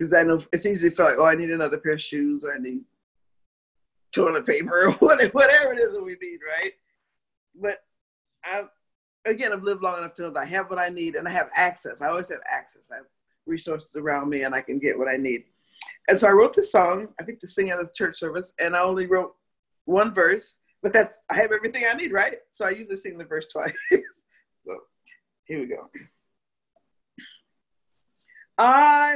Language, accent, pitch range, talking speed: English, American, 180-290 Hz, 210 wpm